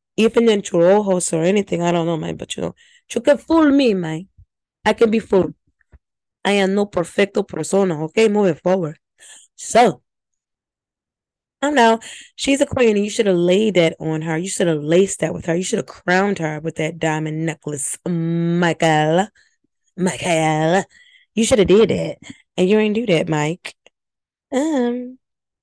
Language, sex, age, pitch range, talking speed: English, female, 10-29, 175-220 Hz, 175 wpm